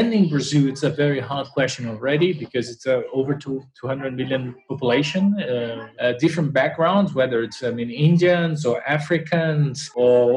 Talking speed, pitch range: 155 wpm, 130-160 Hz